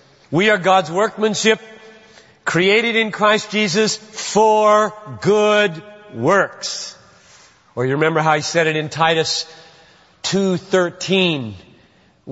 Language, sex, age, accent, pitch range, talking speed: English, male, 40-59, American, 175-225 Hz, 100 wpm